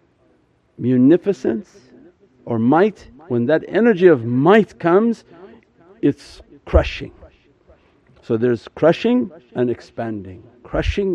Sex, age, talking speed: male, 50-69, 90 wpm